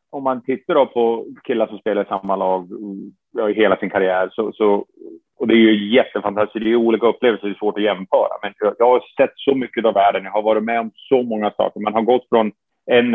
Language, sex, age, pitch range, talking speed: English, male, 30-49, 100-120 Hz, 235 wpm